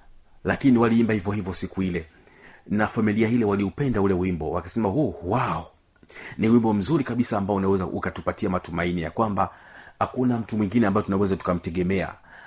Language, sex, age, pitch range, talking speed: Swahili, male, 40-59, 95-115 Hz, 155 wpm